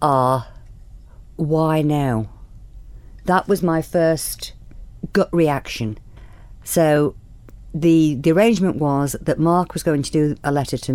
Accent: British